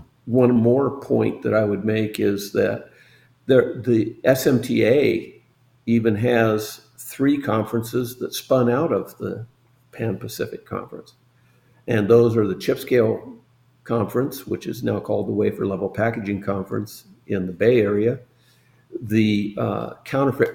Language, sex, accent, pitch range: English, male, American, 110-125 Hz